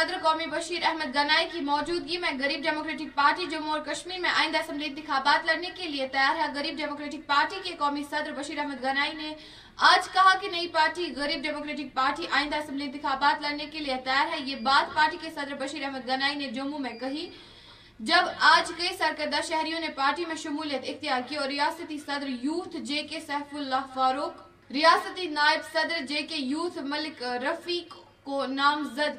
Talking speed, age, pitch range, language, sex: 175 wpm, 20-39, 280-320 Hz, Urdu, female